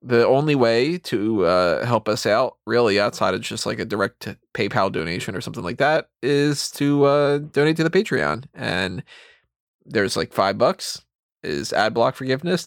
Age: 20-39